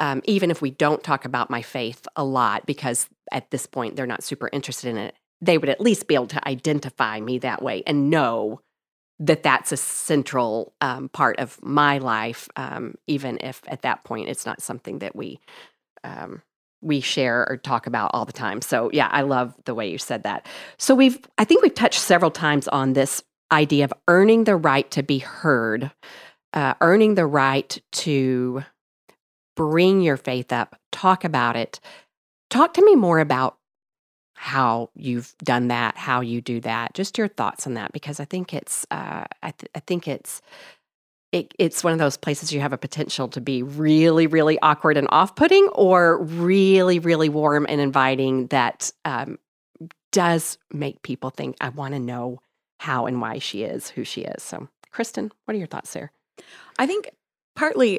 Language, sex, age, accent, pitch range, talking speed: English, female, 40-59, American, 130-170 Hz, 185 wpm